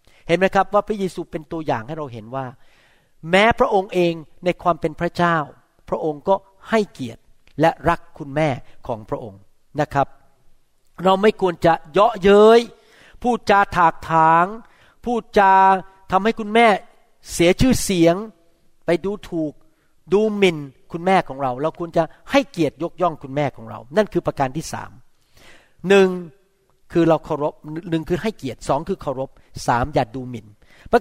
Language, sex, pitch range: Thai, male, 155-215 Hz